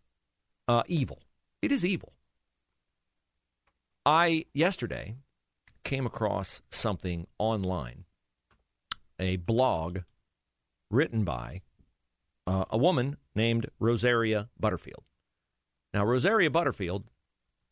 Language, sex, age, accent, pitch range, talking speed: English, male, 40-59, American, 80-120 Hz, 80 wpm